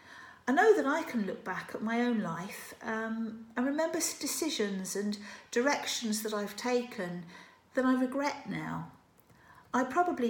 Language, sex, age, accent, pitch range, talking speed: English, female, 50-69, British, 195-255 Hz, 150 wpm